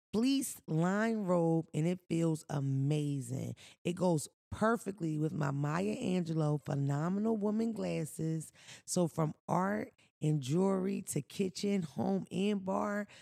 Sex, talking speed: female, 125 wpm